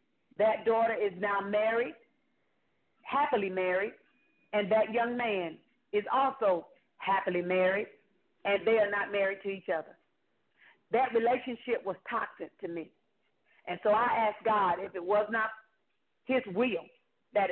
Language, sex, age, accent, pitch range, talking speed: English, female, 40-59, American, 200-255 Hz, 140 wpm